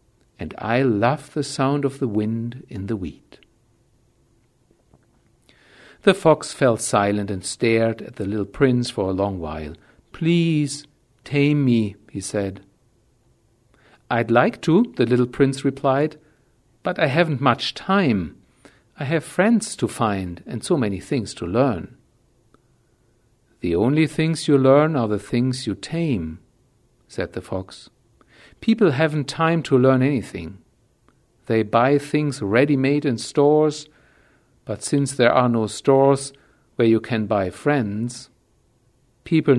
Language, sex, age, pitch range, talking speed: English, male, 60-79, 115-145 Hz, 135 wpm